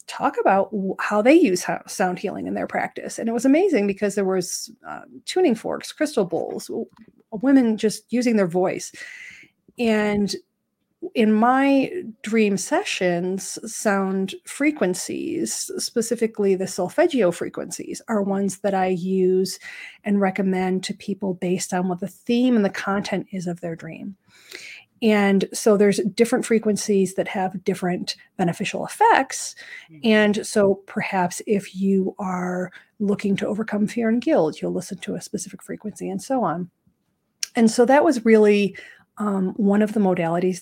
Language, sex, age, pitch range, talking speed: English, female, 30-49, 185-230 Hz, 150 wpm